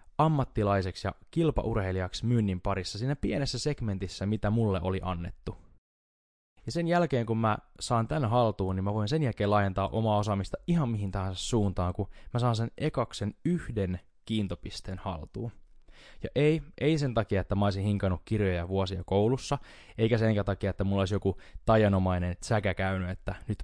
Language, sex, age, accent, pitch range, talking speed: Finnish, male, 20-39, native, 95-115 Hz, 160 wpm